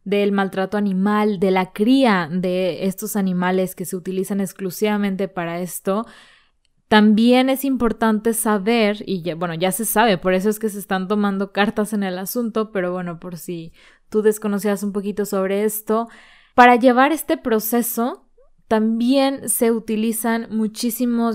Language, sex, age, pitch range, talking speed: Spanish, female, 20-39, 190-230 Hz, 150 wpm